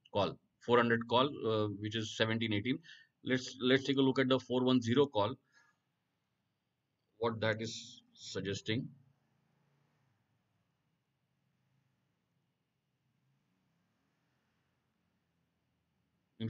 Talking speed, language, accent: 75 wpm, Tamil, native